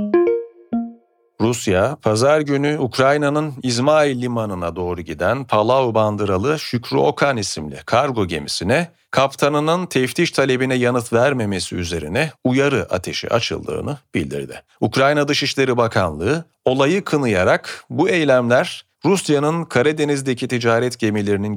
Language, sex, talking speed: Turkish, male, 100 wpm